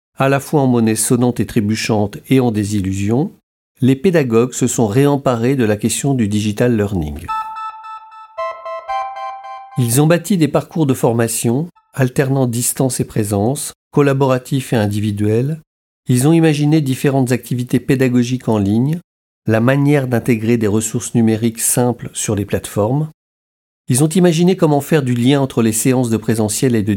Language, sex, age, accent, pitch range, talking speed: French, male, 50-69, French, 110-140 Hz, 150 wpm